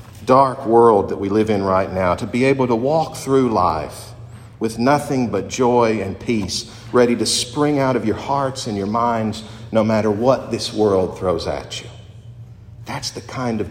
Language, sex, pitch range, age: English, male, 110-130 Hz, 50-69